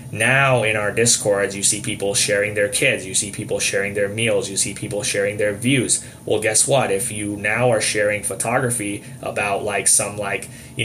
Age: 20-39